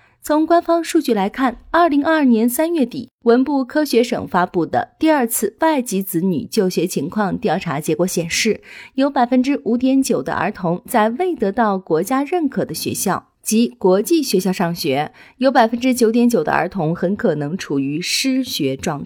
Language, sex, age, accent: Chinese, female, 30-49, native